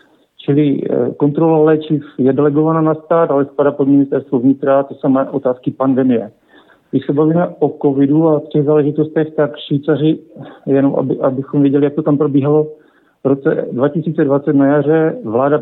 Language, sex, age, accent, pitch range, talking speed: Czech, male, 50-69, native, 135-160 Hz, 160 wpm